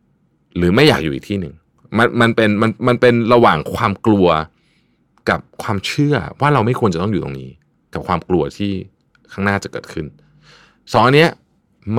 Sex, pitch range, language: male, 85-115 Hz, Thai